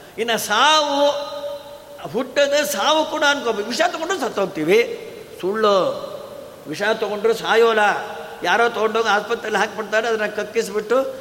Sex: male